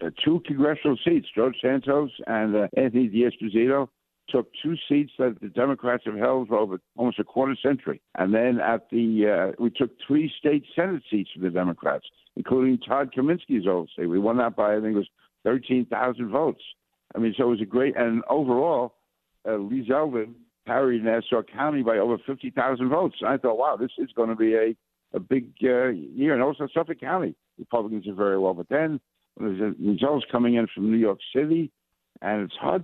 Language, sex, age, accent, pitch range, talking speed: English, male, 60-79, American, 110-135 Hz, 195 wpm